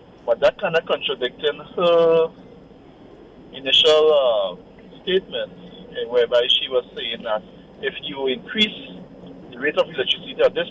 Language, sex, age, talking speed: English, male, 50-69, 135 wpm